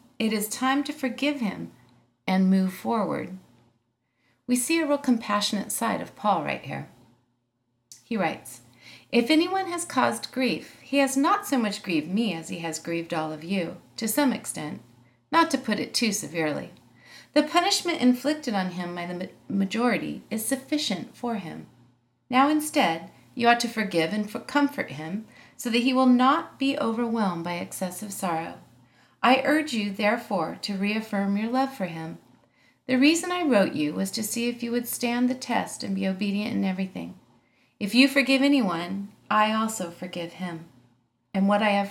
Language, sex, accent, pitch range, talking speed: English, female, American, 175-250 Hz, 175 wpm